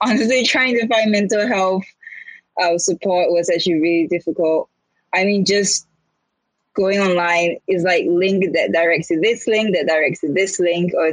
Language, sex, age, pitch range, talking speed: English, female, 10-29, 160-190 Hz, 165 wpm